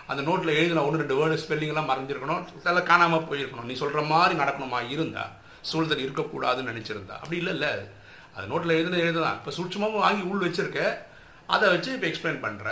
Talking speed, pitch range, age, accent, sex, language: 170 wpm, 130-165 Hz, 50-69, native, male, Tamil